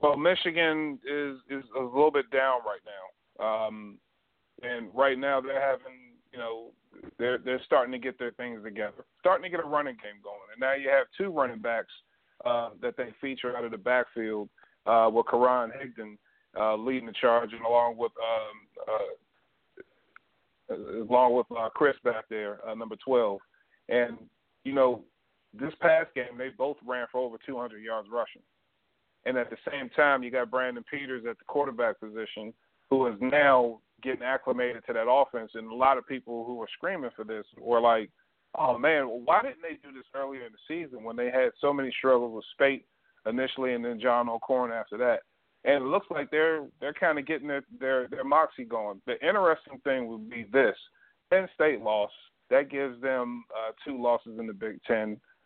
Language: English